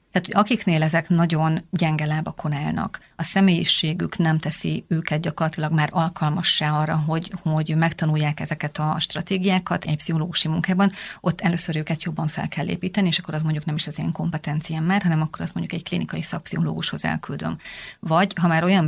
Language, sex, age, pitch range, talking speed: Hungarian, female, 30-49, 155-180 Hz, 170 wpm